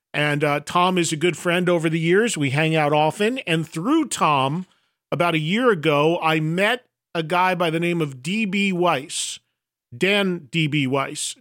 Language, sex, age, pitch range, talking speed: English, male, 40-59, 160-195 Hz, 180 wpm